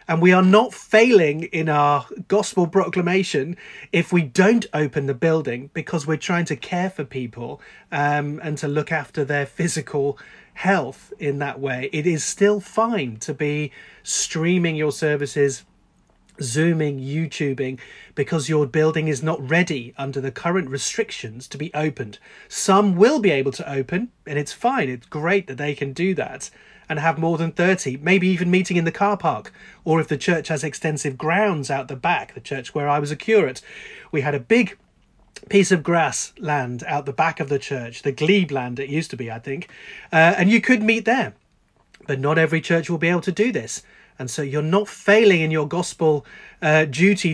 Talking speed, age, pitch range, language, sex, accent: 190 wpm, 30-49, 145-185 Hz, English, male, British